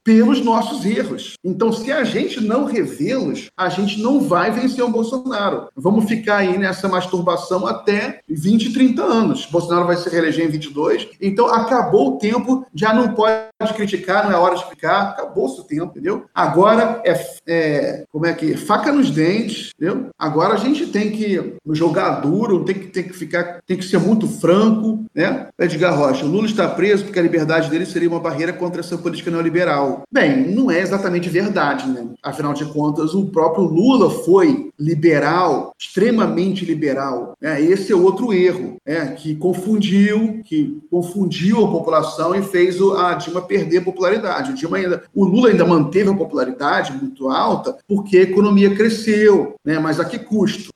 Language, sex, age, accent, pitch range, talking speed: English, male, 40-59, Brazilian, 165-215 Hz, 175 wpm